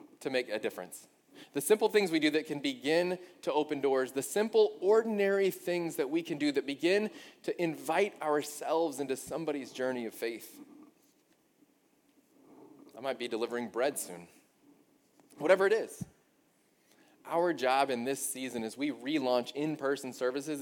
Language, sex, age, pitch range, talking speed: English, male, 20-39, 115-175 Hz, 150 wpm